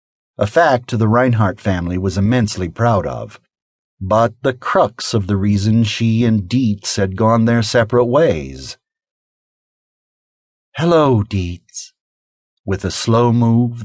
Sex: male